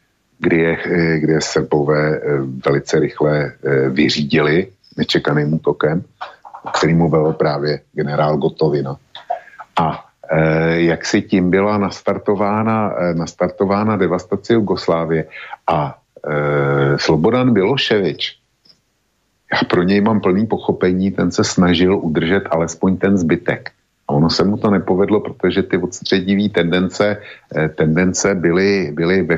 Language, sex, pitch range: Slovak, male, 75-95 Hz